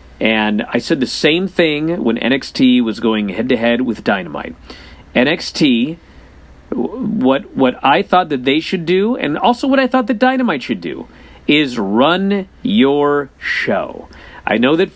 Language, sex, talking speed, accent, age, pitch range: English, male, 150 wpm, American, 40-59, 130-195 Hz